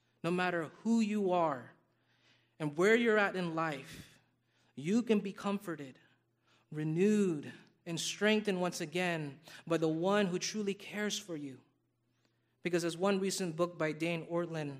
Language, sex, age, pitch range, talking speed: English, male, 30-49, 125-170 Hz, 145 wpm